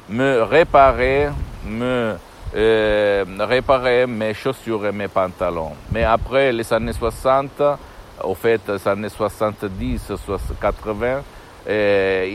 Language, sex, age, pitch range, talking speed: Italian, male, 60-79, 100-125 Hz, 95 wpm